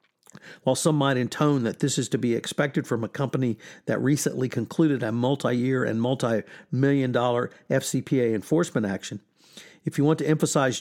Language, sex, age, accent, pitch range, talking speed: English, male, 50-69, American, 125-150 Hz, 160 wpm